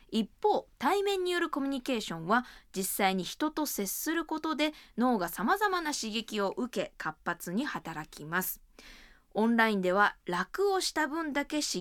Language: Japanese